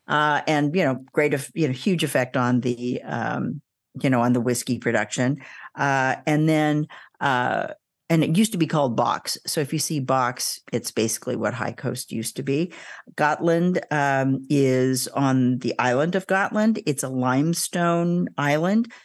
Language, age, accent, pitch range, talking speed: English, 50-69, American, 130-155 Hz, 170 wpm